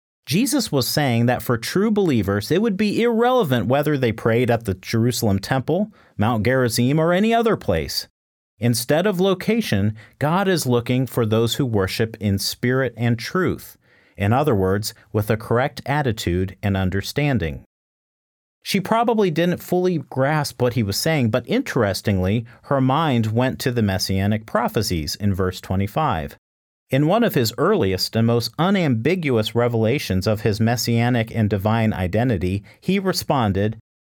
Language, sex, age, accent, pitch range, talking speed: English, male, 40-59, American, 100-135 Hz, 150 wpm